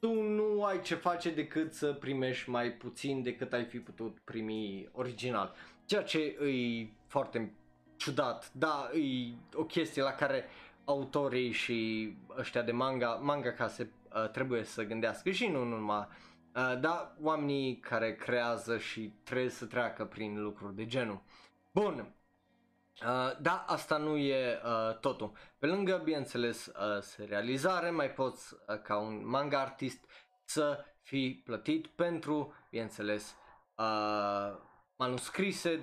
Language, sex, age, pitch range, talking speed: Romanian, male, 20-39, 115-150 Hz, 130 wpm